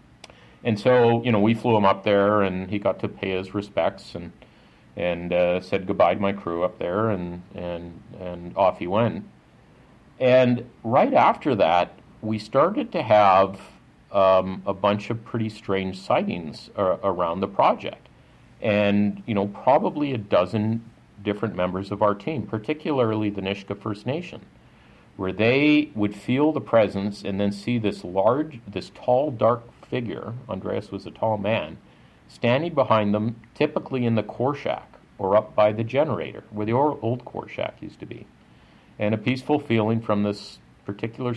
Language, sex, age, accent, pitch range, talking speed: English, male, 50-69, American, 90-110 Hz, 165 wpm